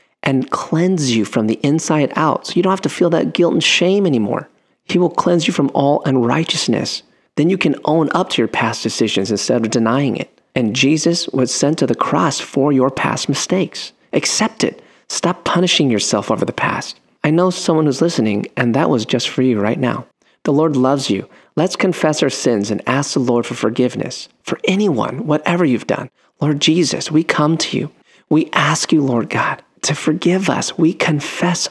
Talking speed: 200 wpm